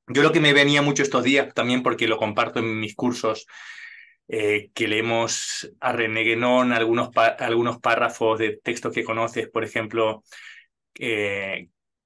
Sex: male